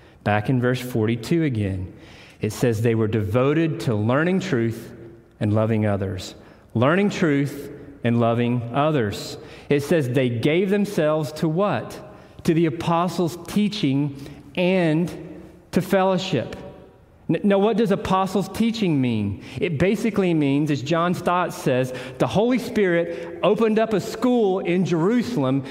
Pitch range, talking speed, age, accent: 140-205 Hz, 135 wpm, 40-59, American